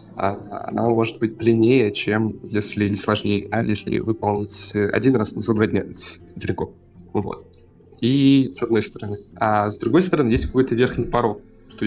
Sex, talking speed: male, 155 wpm